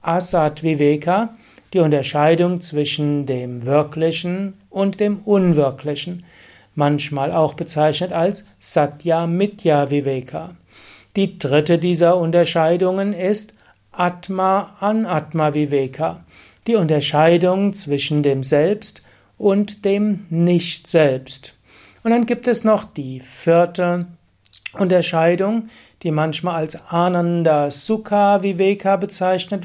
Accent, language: German, German